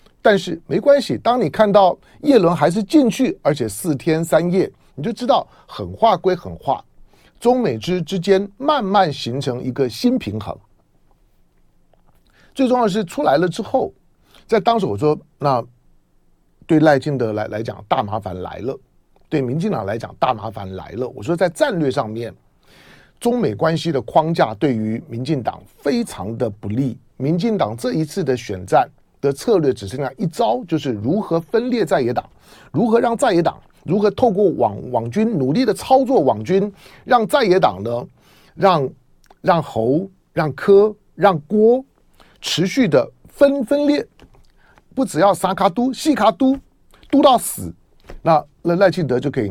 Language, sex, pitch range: Chinese, male, 135-220 Hz